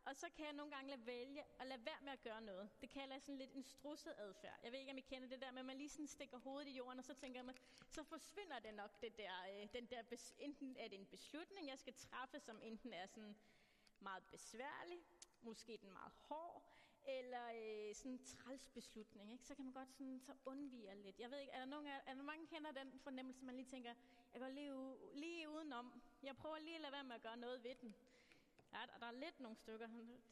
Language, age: Danish, 30-49